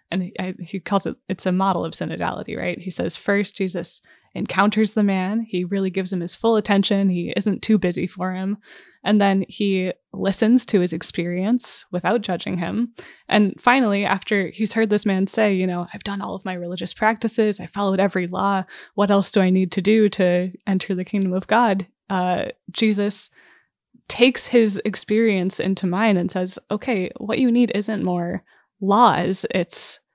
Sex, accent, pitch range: female, American, 180-215 Hz